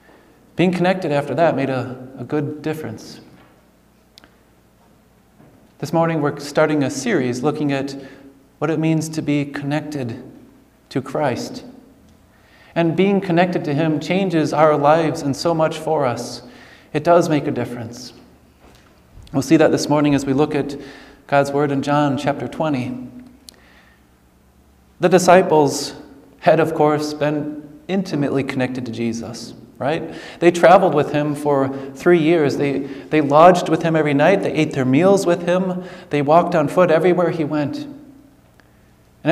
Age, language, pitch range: 30-49, English, 135-170 Hz